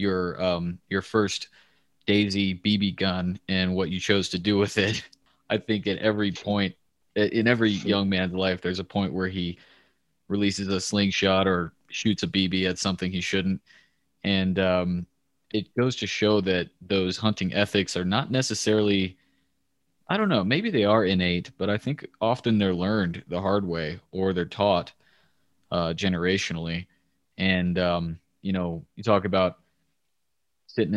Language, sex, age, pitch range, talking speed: English, male, 20-39, 90-100 Hz, 160 wpm